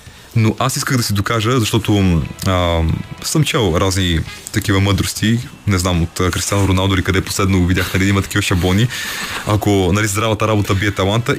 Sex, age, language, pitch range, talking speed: male, 20-39, Bulgarian, 95-110 Hz, 180 wpm